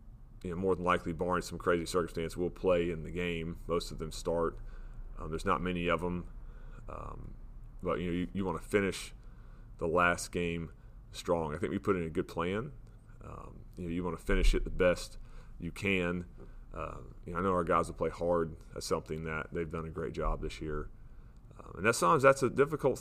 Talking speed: 220 wpm